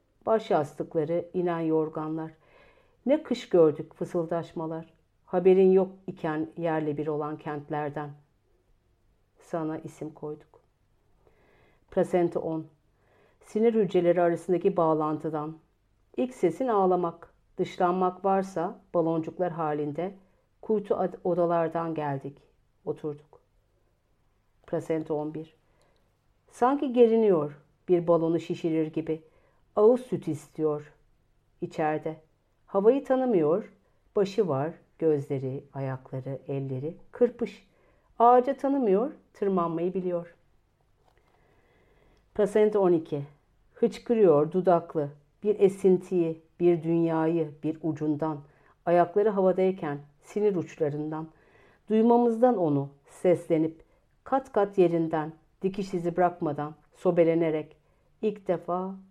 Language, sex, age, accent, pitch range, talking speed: Turkish, female, 50-69, native, 150-185 Hz, 85 wpm